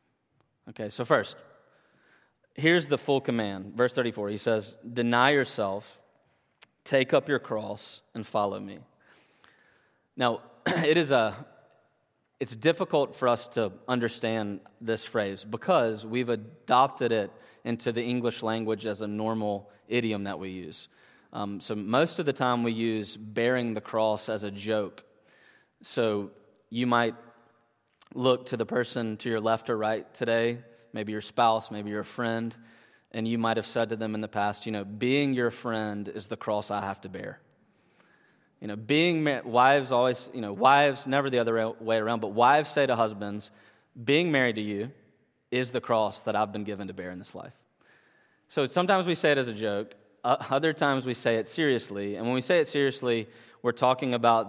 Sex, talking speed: male, 175 wpm